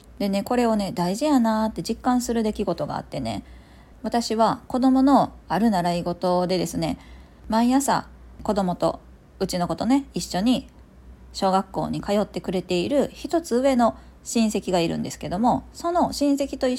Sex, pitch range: female, 175-260 Hz